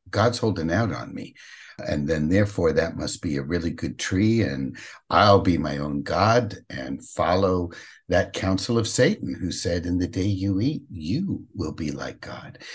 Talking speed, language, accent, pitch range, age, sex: 185 wpm, English, American, 90-130 Hz, 60-79, male